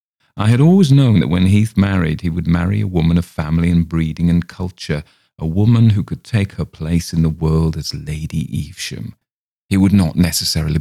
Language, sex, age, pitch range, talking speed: English, male, 40-59, 80-95 Hz, 200 wpm